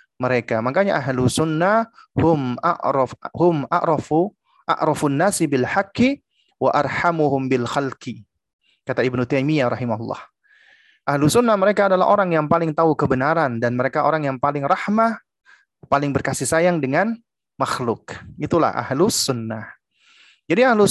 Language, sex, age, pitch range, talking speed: Indonesian, male, 30-49, 135-205 Hz, 125 wpm